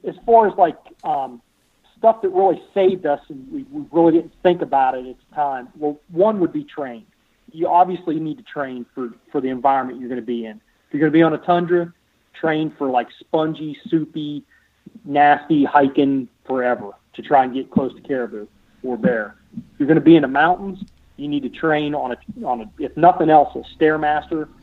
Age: 40-59